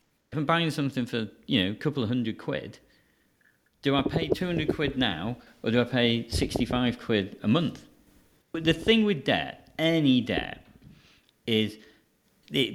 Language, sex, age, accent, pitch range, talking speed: English, male, 40-59, British, 100-135 Hz, 165 wpm